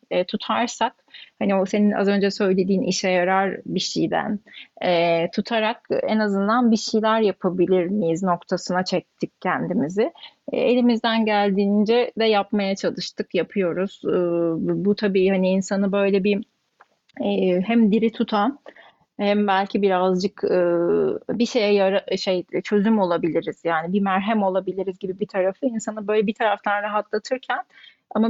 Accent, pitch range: native, 185-230 Hz